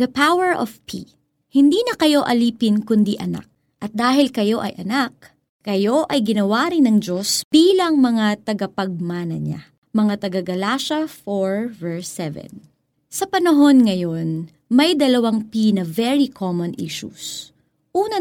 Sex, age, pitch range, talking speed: female, 20-39, 200-270 Hz, 135 wpm